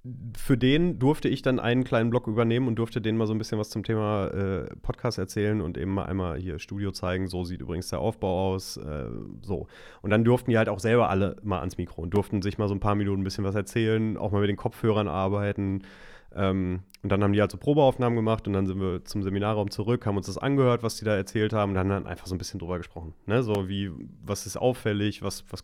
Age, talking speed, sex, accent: 30-49, 255 wpm, male, German